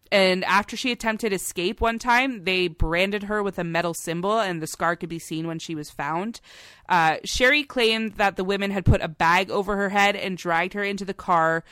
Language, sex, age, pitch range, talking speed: English, female, 20-39, 160-205 Hz, 220 wpm